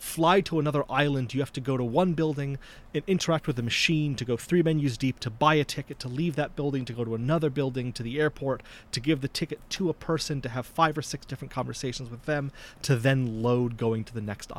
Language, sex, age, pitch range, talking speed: English, male, 30-49, 115-150 Hz, 245 wpm